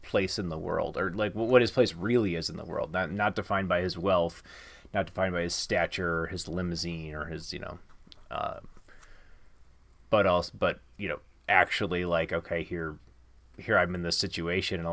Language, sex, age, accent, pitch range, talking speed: English, male, 30-49, American, 85-105 Hz, 195 wpm